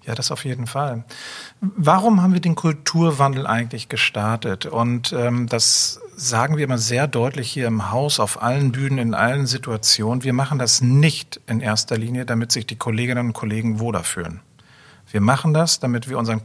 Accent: German